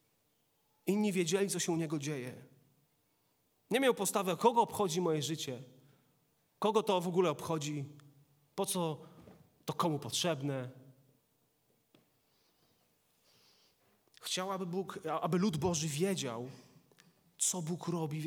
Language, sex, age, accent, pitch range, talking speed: Polish, male, 30-49, native, 140-175 Hz, 110 wpm